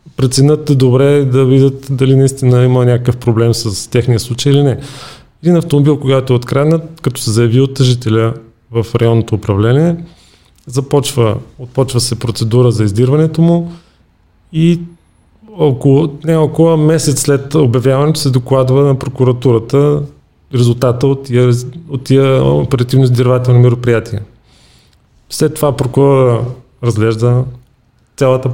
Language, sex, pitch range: Bulgarian, male, 120-145 Hz